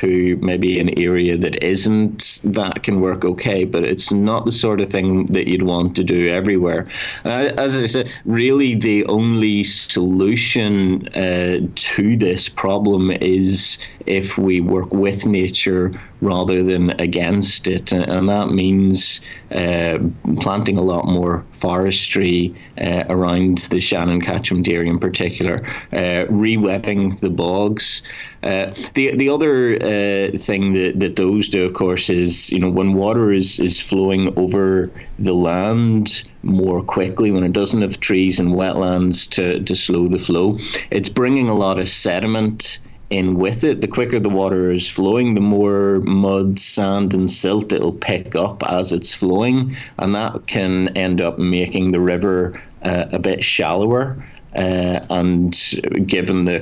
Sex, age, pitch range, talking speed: male, 30-49, 90-100 Hz, 155 wpm